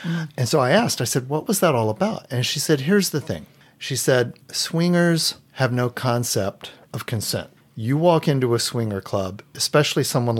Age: 40-59